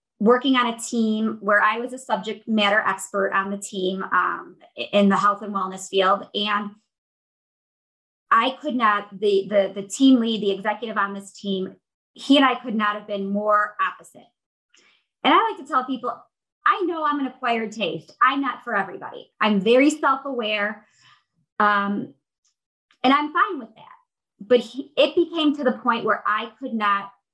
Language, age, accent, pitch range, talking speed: English, 30-49, American, 205-265 Hz, 175 wpm